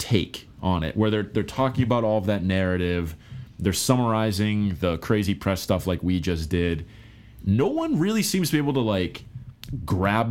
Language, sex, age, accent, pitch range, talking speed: English, male, 20-39, American, 90-115 Hz, 185 wpm